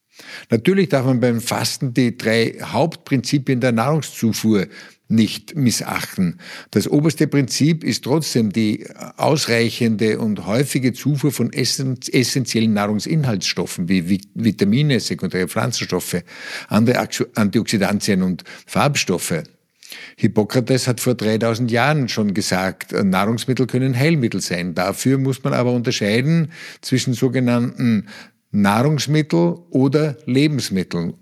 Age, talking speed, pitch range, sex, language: 50-69, 105 wpm, 115-145 Hz, male, German